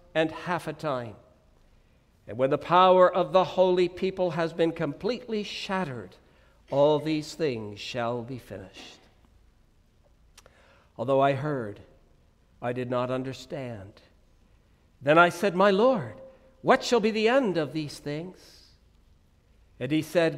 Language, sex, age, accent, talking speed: English, male, 60-79, American, 135 wpm